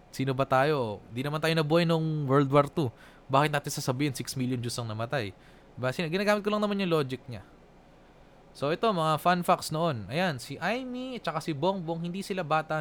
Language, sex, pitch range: Filipino, male, 135-195 Hz